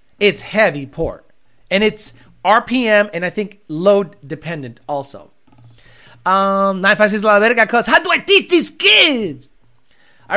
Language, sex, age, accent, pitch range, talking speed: English, male, 30-49, American, 180-250 Hz, 135 wpm